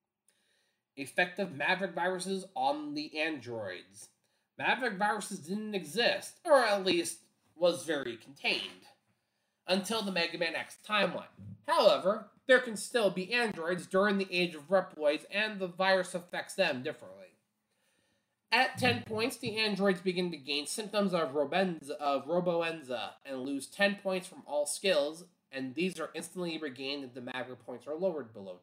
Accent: American